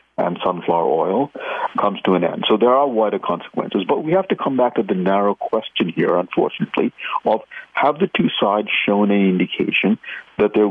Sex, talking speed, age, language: male, 190 wpm, 50-69, English